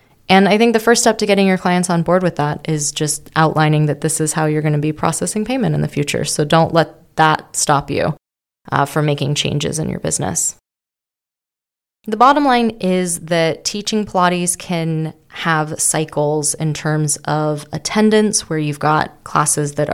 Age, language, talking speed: 20-39, English, 185 wpm